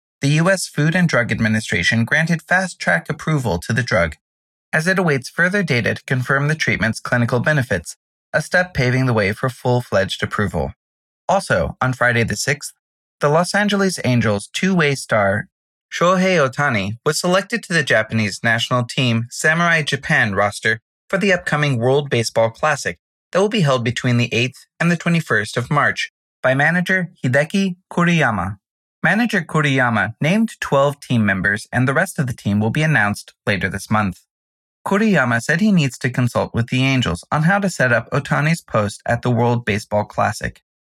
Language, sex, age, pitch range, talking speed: English, male, 20-39, 115-160 Hz, 170 wpm